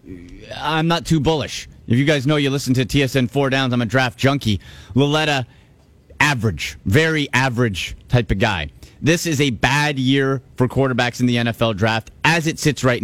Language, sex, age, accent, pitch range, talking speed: English, male, 30-49, American, 115-150 Hz, 185 wpm